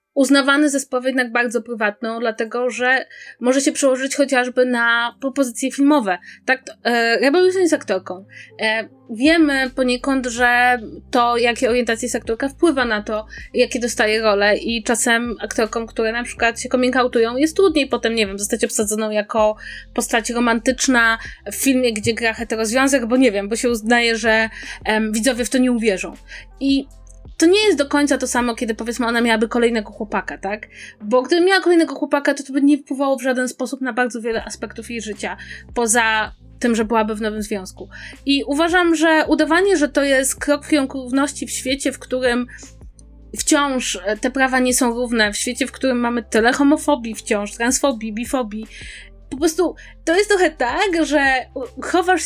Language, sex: Polish, female